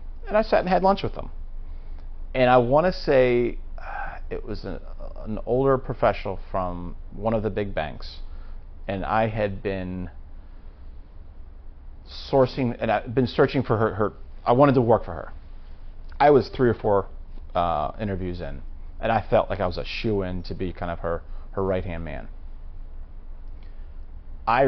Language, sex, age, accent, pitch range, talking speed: English, male, 30-49, American, 75-110 Hz, 170 wpm